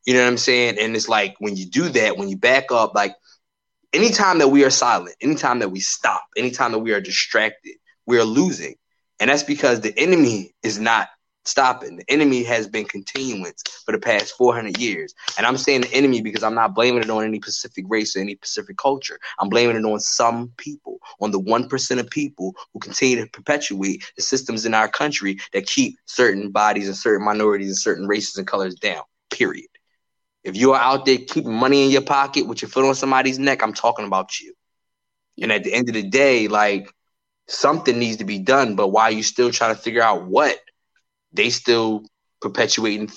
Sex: male